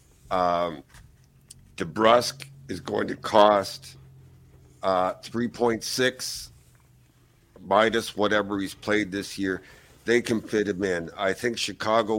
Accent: American